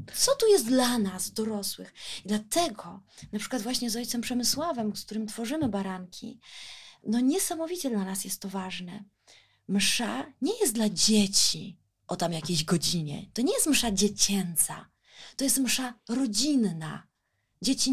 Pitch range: 195-270 Hz